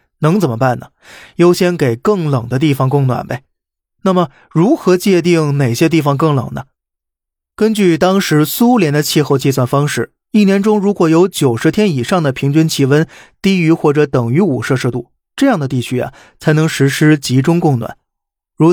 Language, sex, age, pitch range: Chinese, male, 20-39, 135-170 Hz